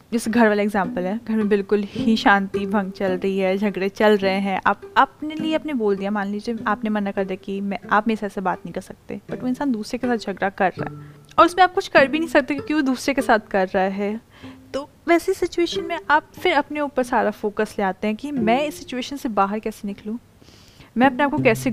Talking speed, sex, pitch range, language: 250 wpm, female, 205-275 Hz, Hindi